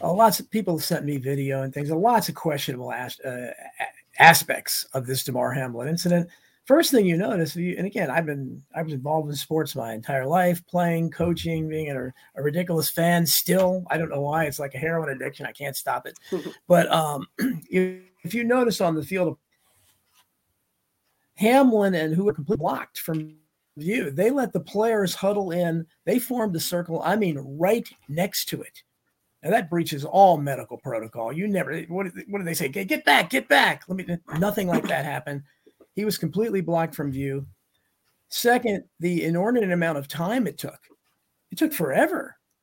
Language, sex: English, male